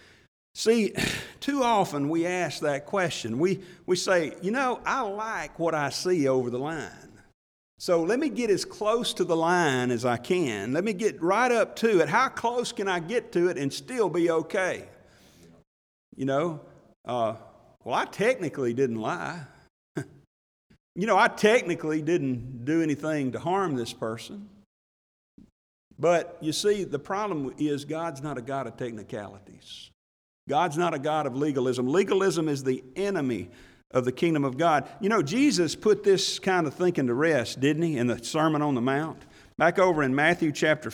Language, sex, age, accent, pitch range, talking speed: English, male, 50-69, American, 140-200 Hz, 175 wpm